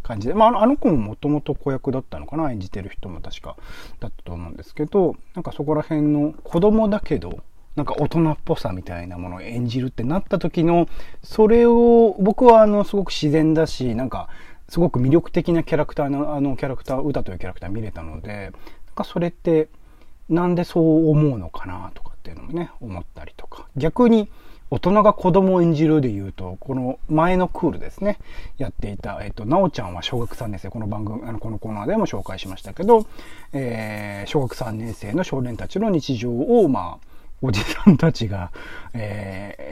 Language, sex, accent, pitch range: Japanese, male, native, 110-175 Hz